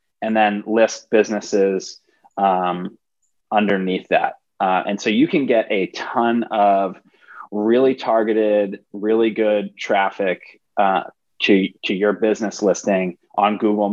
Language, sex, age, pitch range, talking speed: English, male, 20-39, 100-110 Hz, 125 wpm